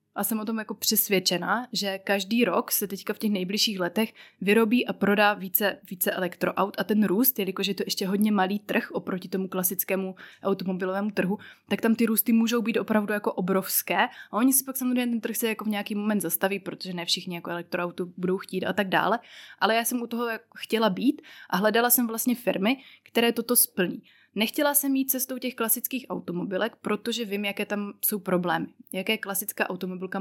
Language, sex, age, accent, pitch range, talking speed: Czech, female, 20-39, native, 185-225 Hz, 195 wpm